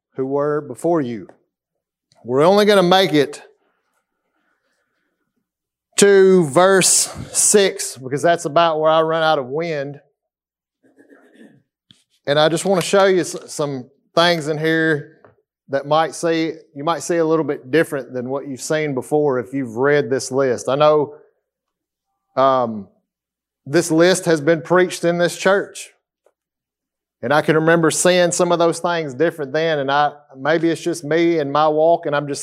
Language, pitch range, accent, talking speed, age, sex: English, 145-175 Hz, American, 160 wpm, 30-49, male